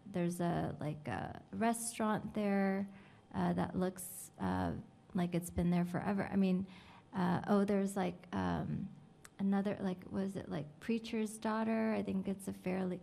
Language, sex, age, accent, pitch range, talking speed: English, female, 20-39, American, 175-195 Hz, 155 wpm